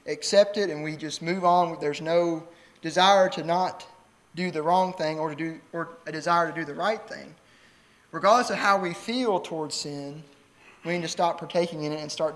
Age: 20-39